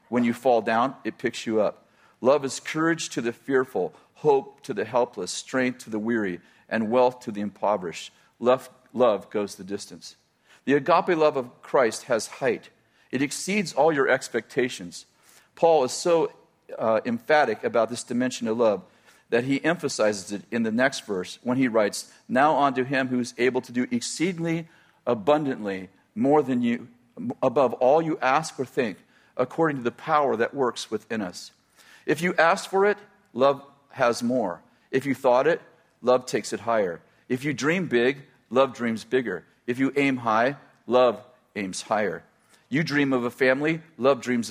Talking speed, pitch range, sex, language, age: 175 wpm, 115-145 Hz, male, English, 40-59